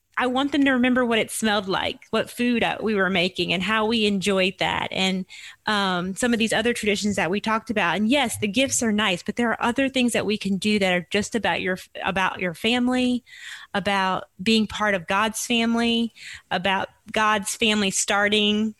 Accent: American